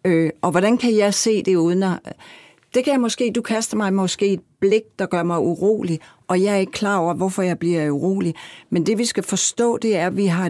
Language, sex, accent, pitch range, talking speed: Danish, female, native, 170-210 Hz, 230 wpm